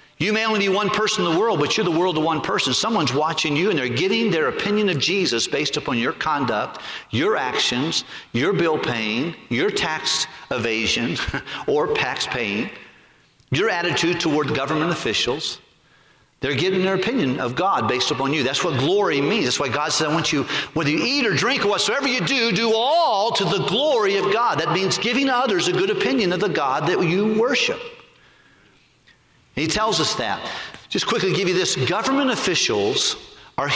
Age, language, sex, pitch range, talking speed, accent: 50-69, English, male, 130-215 Hz, 190 wpm, American